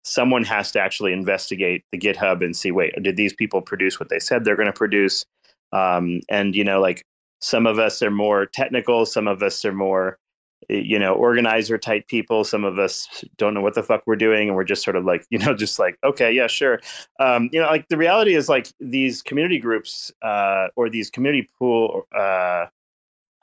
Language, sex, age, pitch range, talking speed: English, male, 30-49, 105-145 Hz, 205 wpm